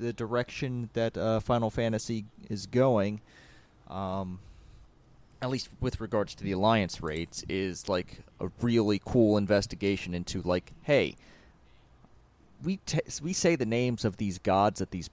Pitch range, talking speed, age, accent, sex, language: 95-115 Hz, 145 wpm, 30-49, American, male, English